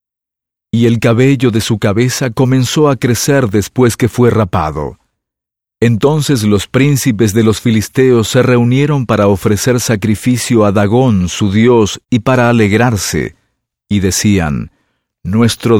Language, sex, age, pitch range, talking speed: English, male, 50-69, 105-130 Hz, 130 wpm